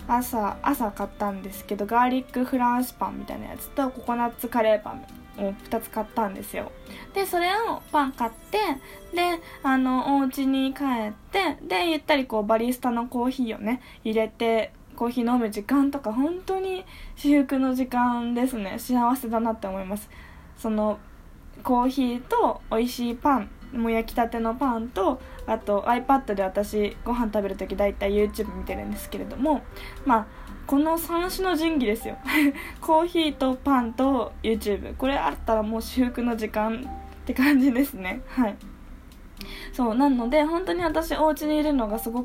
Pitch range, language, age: 220-285 Hz, Japanese, 10-29